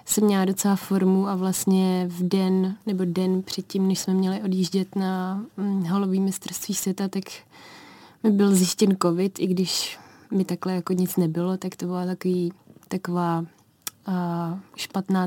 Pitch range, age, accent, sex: 180-195 Hz, 20-39, native, female